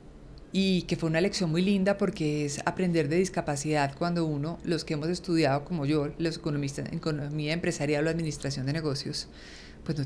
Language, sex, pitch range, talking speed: Spanish, female, 155-190 Hz, 185 wpm